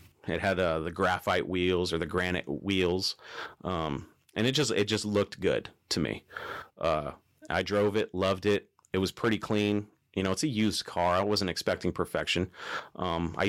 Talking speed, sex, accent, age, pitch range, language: 185 wpm, male, American, 30-49, 85-100 Hz, English